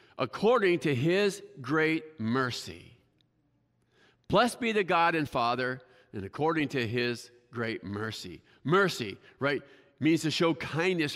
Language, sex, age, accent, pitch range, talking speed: English, male, 50-69, American, 130-185 Hz, 125 wpm